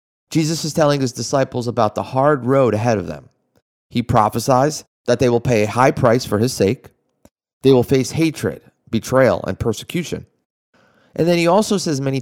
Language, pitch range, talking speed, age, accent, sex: English, 110-135 Hz, 180 wpm, 30-49, American, male